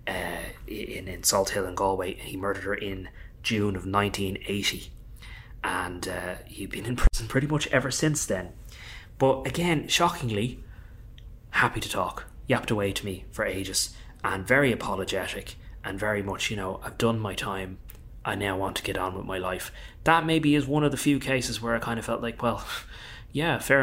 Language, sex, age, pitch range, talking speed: English, male, 20-39, 95-120 Hz, 190 wpm